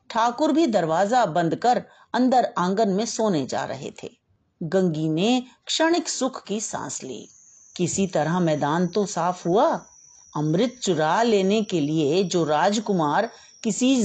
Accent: native